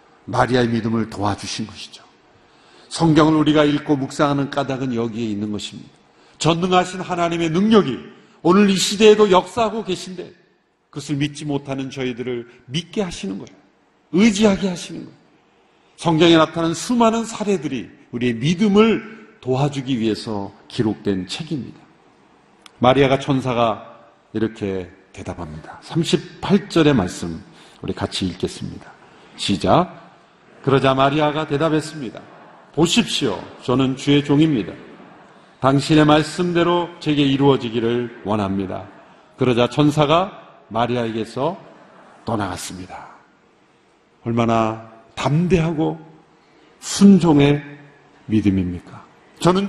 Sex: male